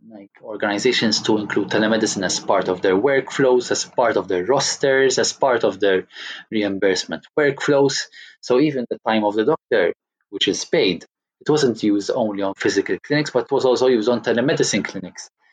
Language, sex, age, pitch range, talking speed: English, male, 20-39, 105-155 Hz, 180 wpm